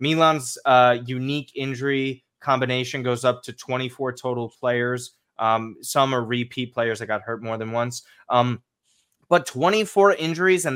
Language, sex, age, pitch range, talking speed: English, male, 20-39, 120-165 Hz, 150 wpm